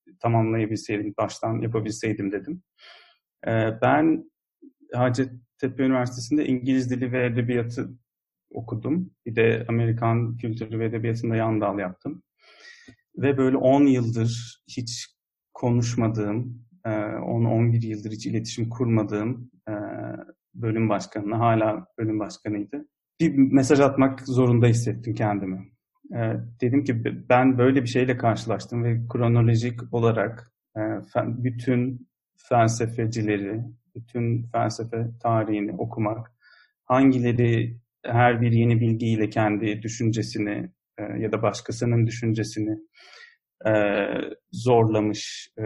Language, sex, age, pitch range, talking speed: English, male, 40-59, 110-125 Hz, 90 wpm